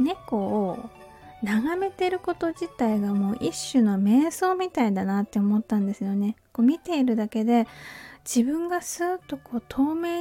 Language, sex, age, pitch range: Japanese, female, 20-39, 210-280 Hz